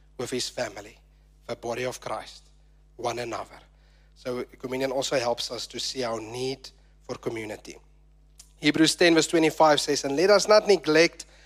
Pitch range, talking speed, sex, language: 135-165 Hz, 155 wpm, male, English